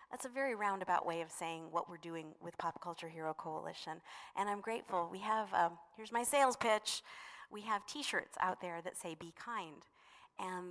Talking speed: 195 wpm